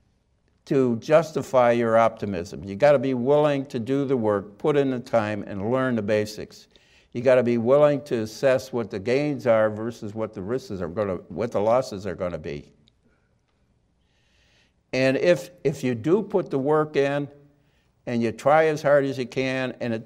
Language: English